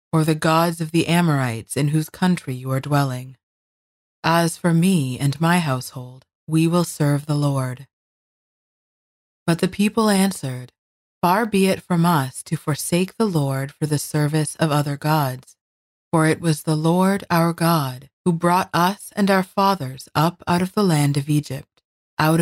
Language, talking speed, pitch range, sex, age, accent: English, 170 wpm, 135-175 Hz, female, 30-49, American